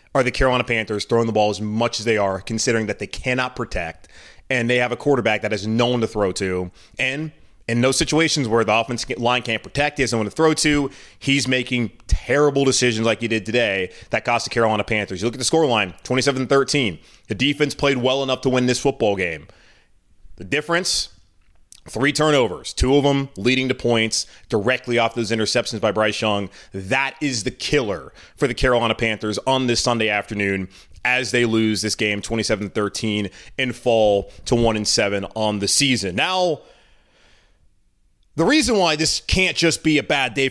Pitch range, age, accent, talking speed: 110-145 Hz, 30-49, American, 190 wpm